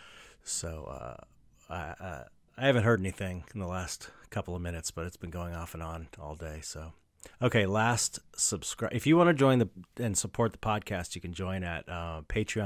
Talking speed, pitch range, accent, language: 195 wpm, 80-110 Hz, American, English